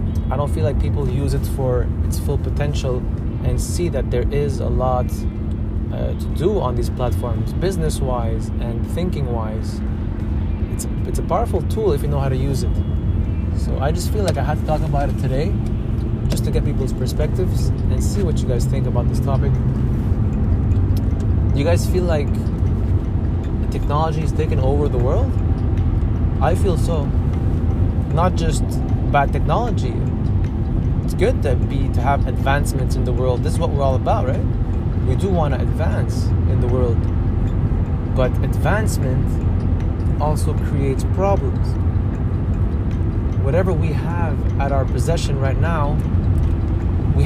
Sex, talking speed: male, 155 wpm